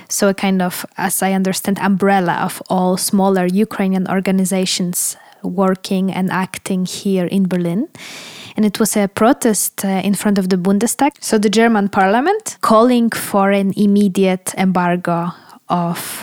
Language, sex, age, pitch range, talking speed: English, female, 20-39, 180-205 Hz, 150 wpm